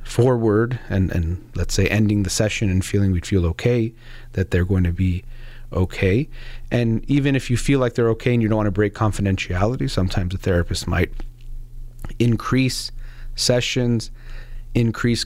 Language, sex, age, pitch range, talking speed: English, male, 40-59, 95-120 Hz, 160 wpm